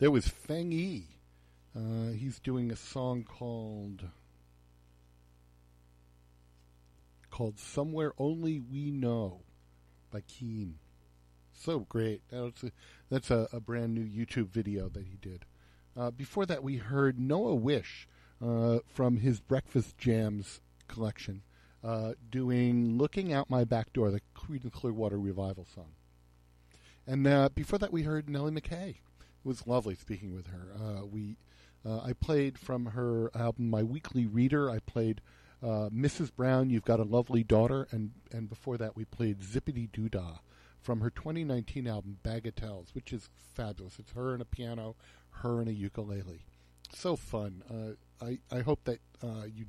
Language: English